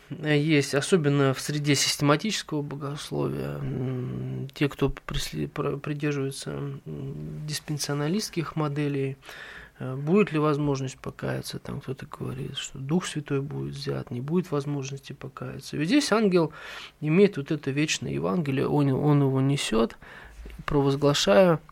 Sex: male